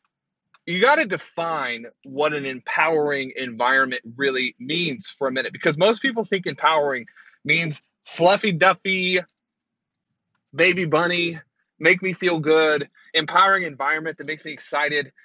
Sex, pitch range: male, 150-195 Hz